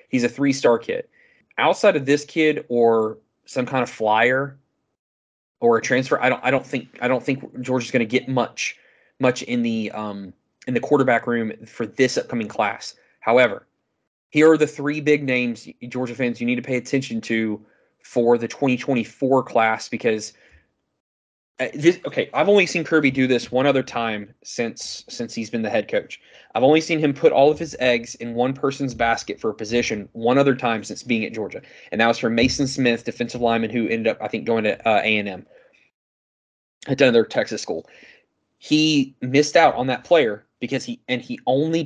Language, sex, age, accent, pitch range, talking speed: English, male, 20-39, American, 115-145 Hz, 190 wpm